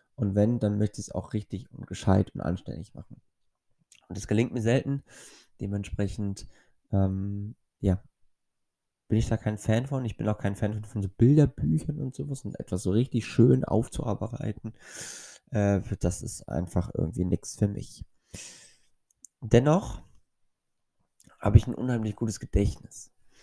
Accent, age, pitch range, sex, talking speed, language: German, 20-39, 95-115 Hz, male, 150 wpm, German